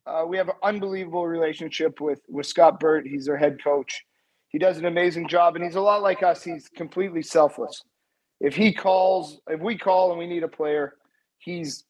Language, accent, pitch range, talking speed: English, American, 160-190 Hz, 200 wpm